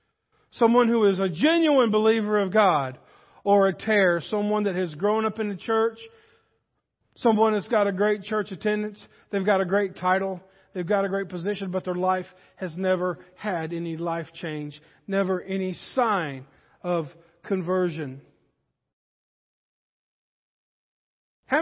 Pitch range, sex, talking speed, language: 185-235 Hz, male, 140 wpm, English